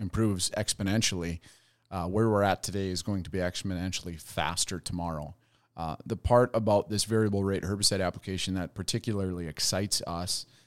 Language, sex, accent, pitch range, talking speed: English, male, American, 90-115 Hz, 150 wpm